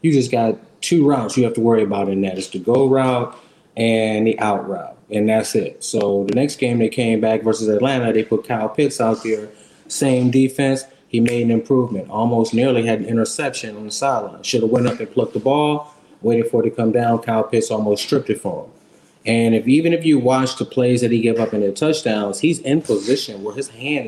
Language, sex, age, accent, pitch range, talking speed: English, male, 20-39, American, 115-165 Hz, 235 wpm